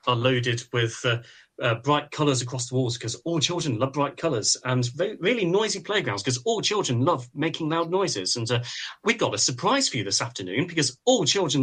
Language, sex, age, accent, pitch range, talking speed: English, male, 30-49, British, 120-145 Hz, 210 wpm